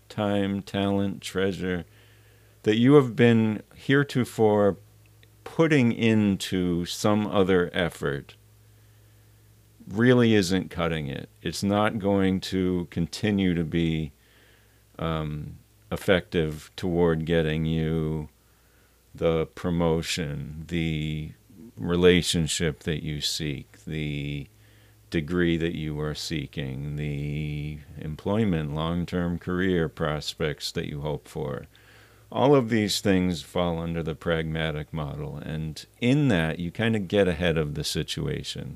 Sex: male